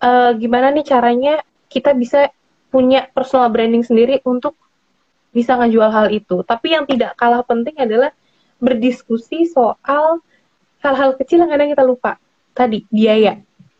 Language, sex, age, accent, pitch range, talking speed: Indonesian, female, 10-29, native, 215-285 Hz, 130 wpm